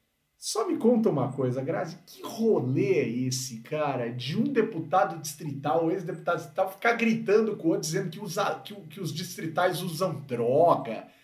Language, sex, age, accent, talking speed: Portuguese, male, 40-59, Brazilian, 170 wpm